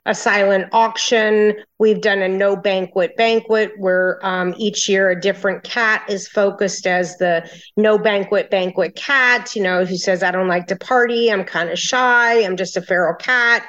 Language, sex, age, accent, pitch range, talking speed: English, female, 40-59, American, 190-225 Hz, 185 wpm